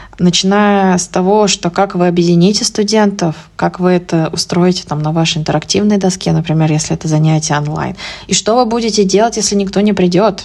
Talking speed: 180 wpm